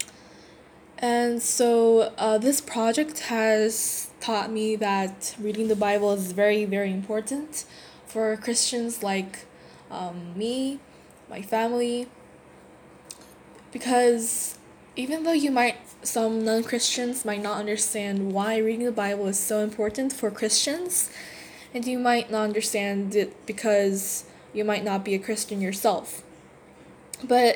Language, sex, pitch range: Korean, female, 205-240 Hz